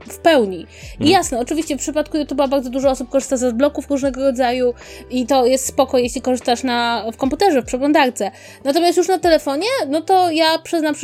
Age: 20-39